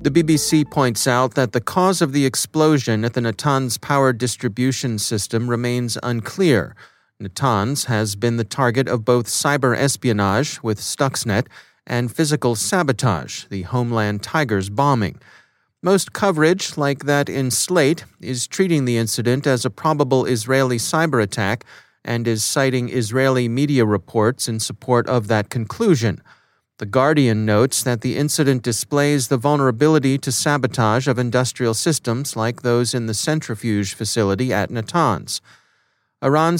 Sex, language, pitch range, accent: male, English, 115-145 Hz, American